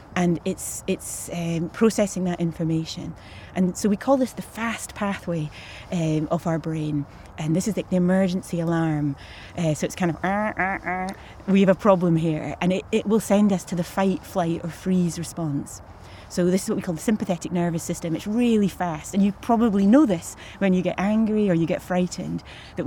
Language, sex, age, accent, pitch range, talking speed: English, female, 30-49, British, 165-210 Hz, 205 wpm